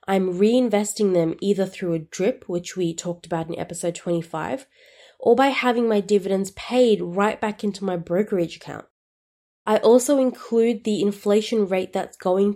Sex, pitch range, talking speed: female, 175-220 Hz, 160 wpm